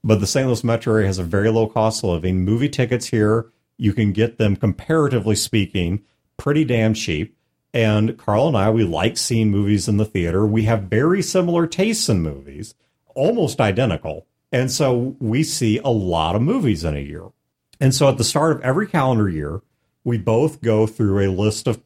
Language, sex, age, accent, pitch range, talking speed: English, male, 40-59, American, 100-130 Hz, 200 wpm